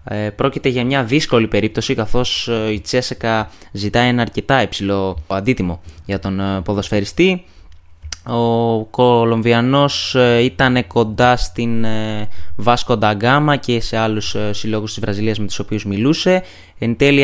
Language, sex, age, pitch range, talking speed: Greek, male, 20-39, 105-125 Hz, 120 wpm